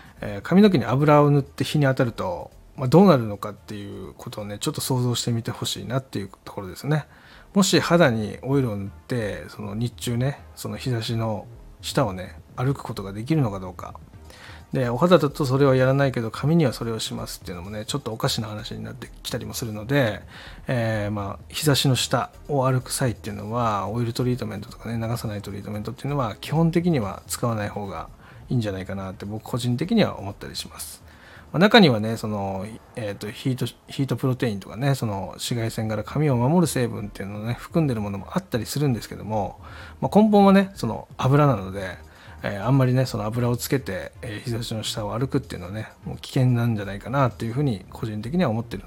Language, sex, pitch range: Japanese, male, 105-135 Hz